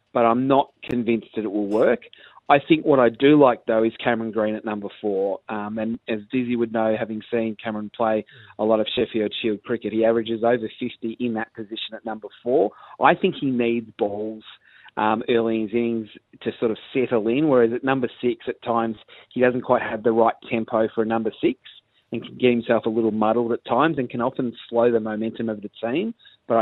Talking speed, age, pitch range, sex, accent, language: 220 wpm, 30-49, 110-125 Hz, male, Australian, English